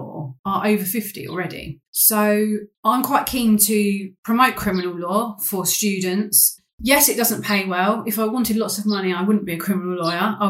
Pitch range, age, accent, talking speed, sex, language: 175-215 Hz, 30-49, British, 185 wpm, female, English